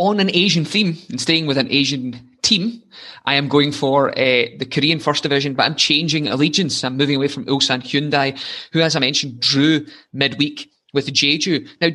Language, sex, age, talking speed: English, male, 20-39, 190 wpm